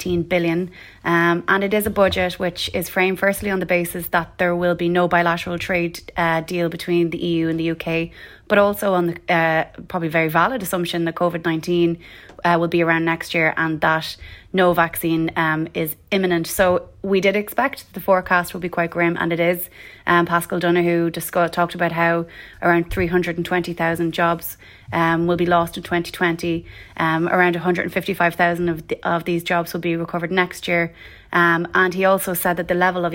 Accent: Irish